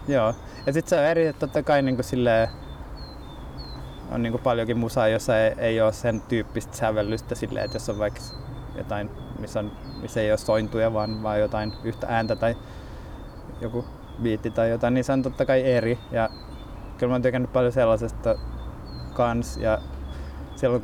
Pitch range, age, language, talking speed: 105-120 Hz, 20-39, Finnish, 170 wpm